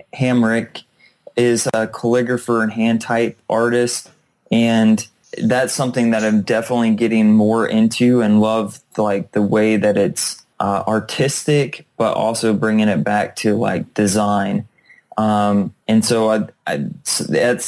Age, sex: 20-39, male